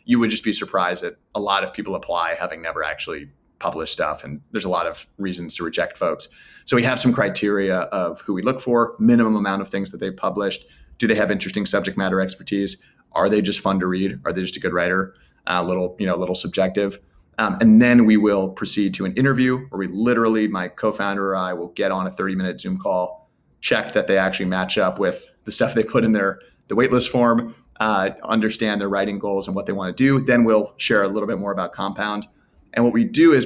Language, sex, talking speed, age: English, male, 240 wpm, 30-49